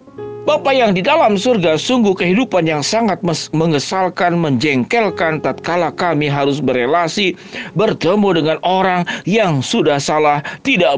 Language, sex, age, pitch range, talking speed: Indonesian, male, 40-59, 140-220 Hz, 120 wpm